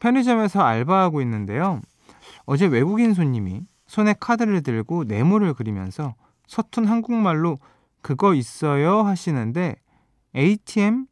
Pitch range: 125-200 Hz